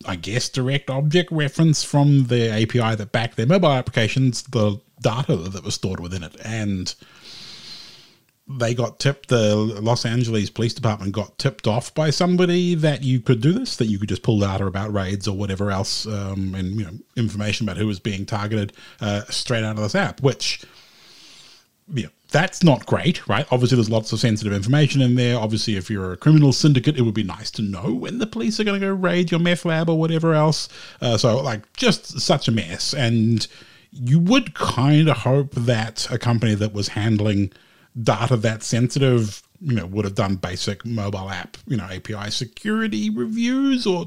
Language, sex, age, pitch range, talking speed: English, male, 30-49, 105-150 Hz, 195 wpm